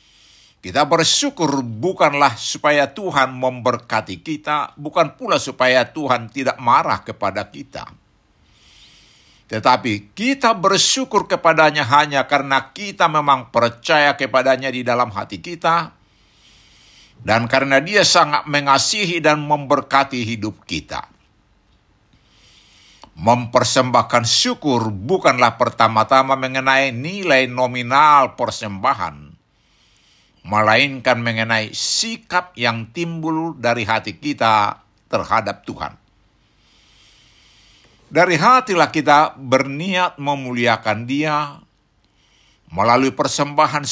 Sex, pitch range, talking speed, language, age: male, 115-150 Hz, 85 wpm, Indonesian, 60-79